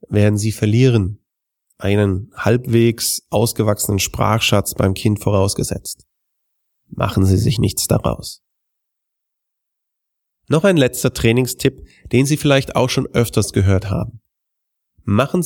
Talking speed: 110 wpm